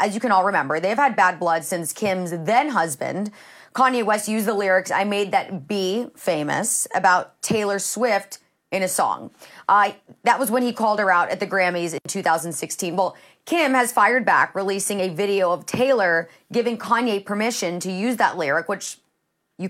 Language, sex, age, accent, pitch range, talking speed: English, female, 30-49, American, 185-235 Hz, 185 wpm